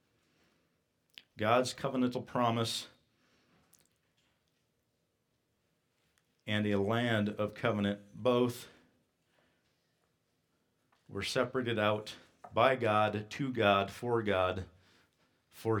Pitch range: 100-120 Hz